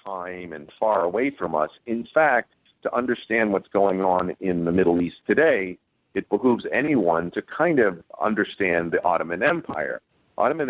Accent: American